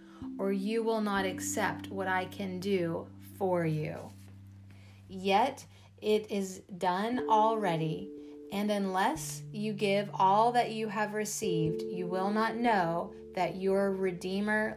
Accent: American